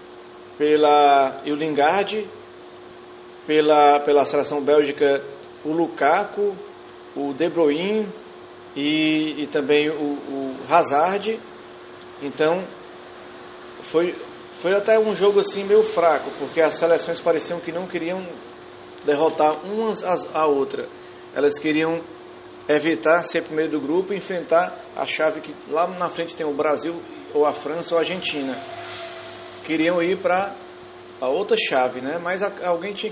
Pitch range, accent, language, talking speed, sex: 145-225 Hz, Brazilian, English, 130 wpm, male